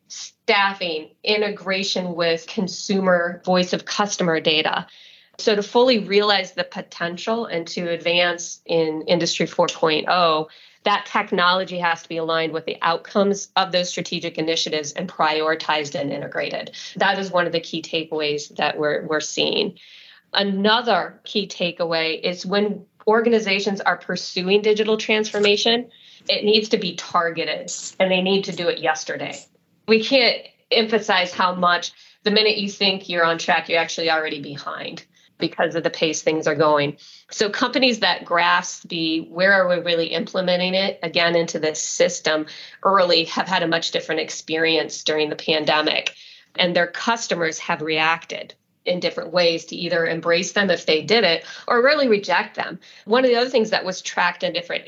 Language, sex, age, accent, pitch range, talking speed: English, female, 30-49, American, 165-205 Hz, 160 wpm